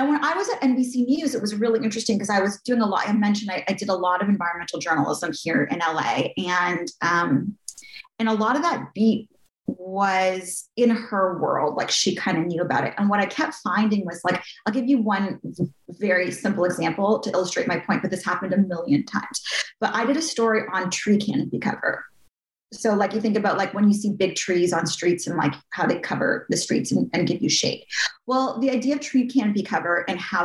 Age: 30-49